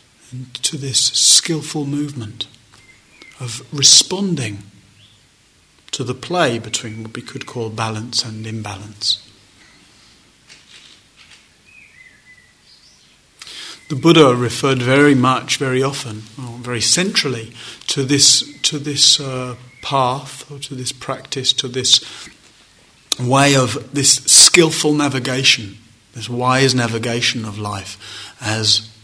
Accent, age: British, 30-49